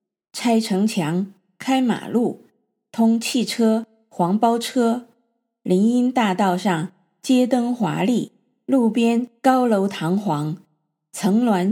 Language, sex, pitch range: Chinese, female, 195-250 Hz